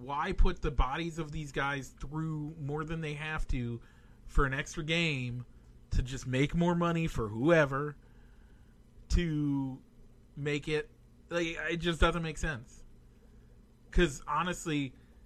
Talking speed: 140 wpm